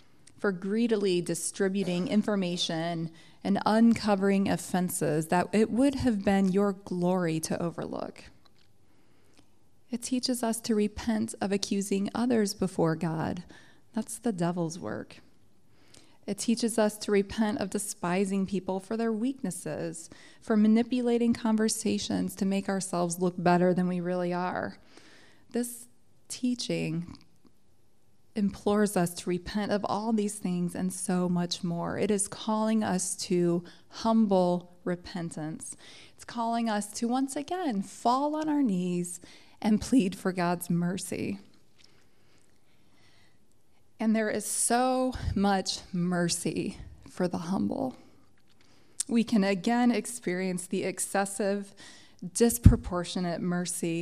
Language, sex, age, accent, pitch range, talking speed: English, female, 20-39, American, 175-220 Hz, 120 wpm